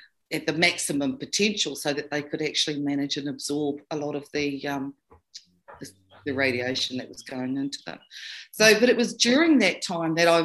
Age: 50-69